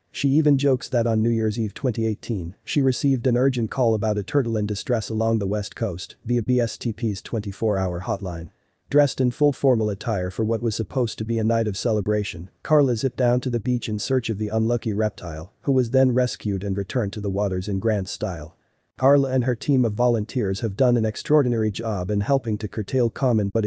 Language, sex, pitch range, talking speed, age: English, male, 100-125 Hz, 210 wpm, 40-59